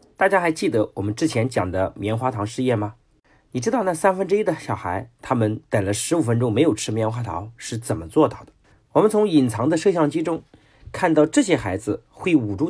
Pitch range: 110-165 Hz